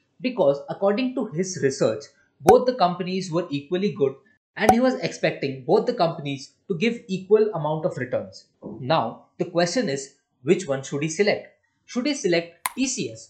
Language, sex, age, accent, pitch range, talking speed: Hindi, male, 20-39, native, 150-220 Hz, 165 wpm